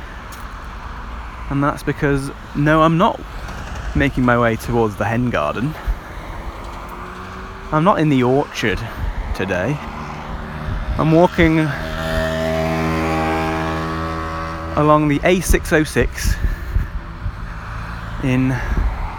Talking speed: 80 wpm